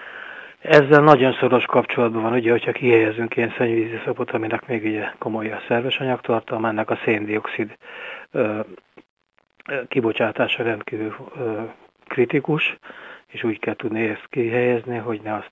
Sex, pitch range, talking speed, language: male, 110-125 Hz, 130 wpm, Hungarian